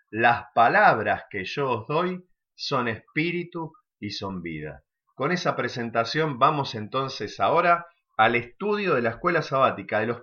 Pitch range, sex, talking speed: 130-175 Hz, male, 145 wpm